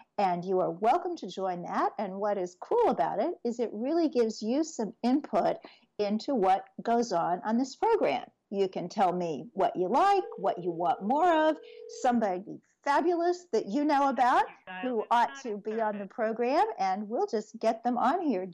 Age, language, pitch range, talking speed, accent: 50-69, English, 195-275 Hz, 190 wpm, American